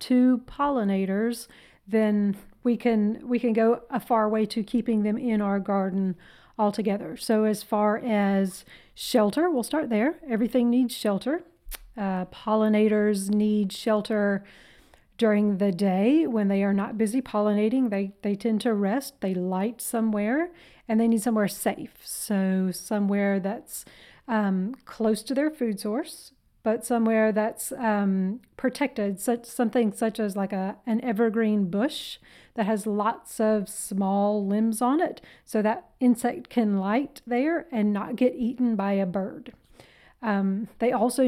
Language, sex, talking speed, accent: English, female, 150 wpm, American